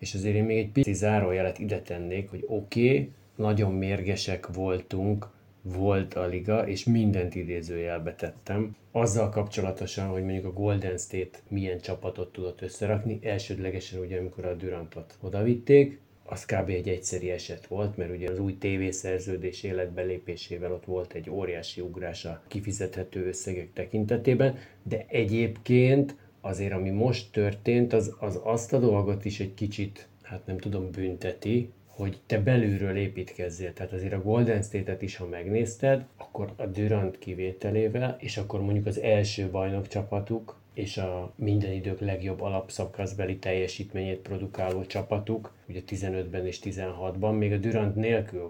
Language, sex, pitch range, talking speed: Hungarian, male, 95-110 Hz, 145 wpm